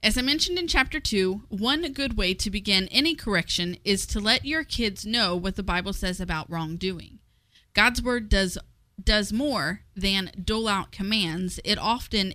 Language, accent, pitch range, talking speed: English, American, 190-240 Hz, 175 wpm